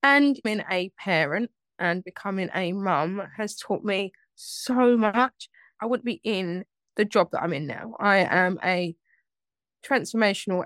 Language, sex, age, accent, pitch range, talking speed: English, female, 10-29, British, 195-255 Hz, 150 wpm